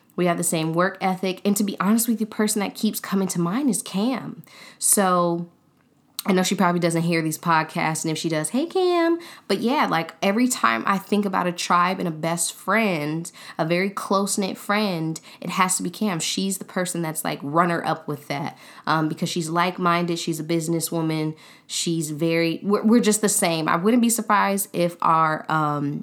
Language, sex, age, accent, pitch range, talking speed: English, female, 10-29, American, 160-195 Hz, 205 wpm